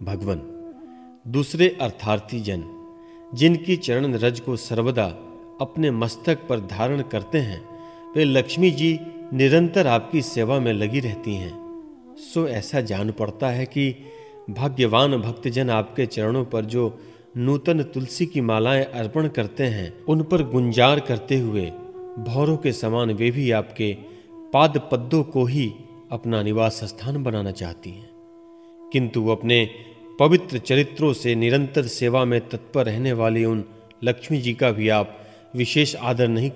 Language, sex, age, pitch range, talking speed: Hindi, male, 40-59, 115-160 Hz, 140 wpm